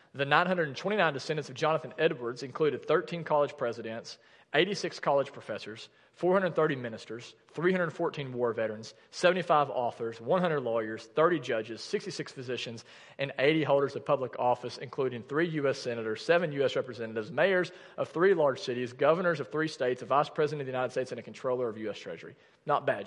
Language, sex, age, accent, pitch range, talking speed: English, male, 40-59, American, 125-160 Hz, 165 wpm